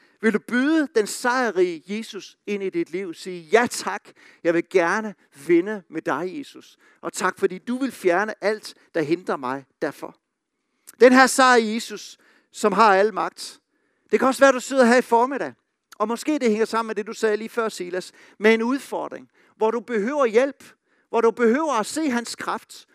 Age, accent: 60-79, native